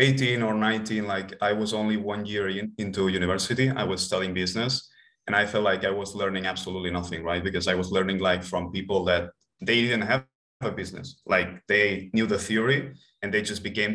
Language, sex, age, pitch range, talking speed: English, male, 30-49, 95-110 Hz, 205 wpm